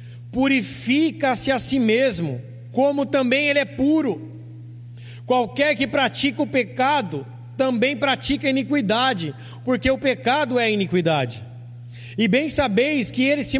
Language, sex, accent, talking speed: Portuguese, male, Brazilian, 130 wpm